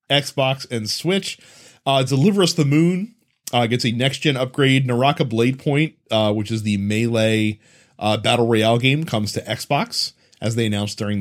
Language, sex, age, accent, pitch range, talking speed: English, male, 30-49, American, 120-155 Hz, 175 wpm